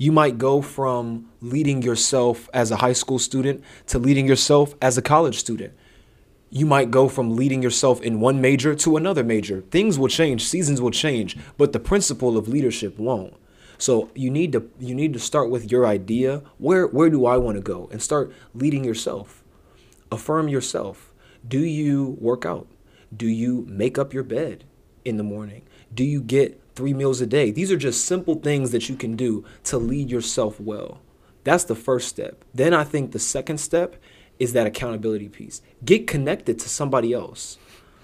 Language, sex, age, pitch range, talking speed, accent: English, male, 20-39, 115-145 Hz, 185 wpm, American